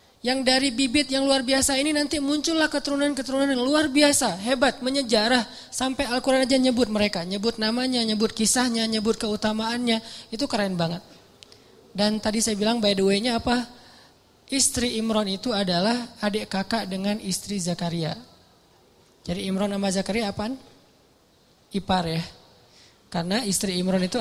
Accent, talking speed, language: native, 140 wpm, Indonesian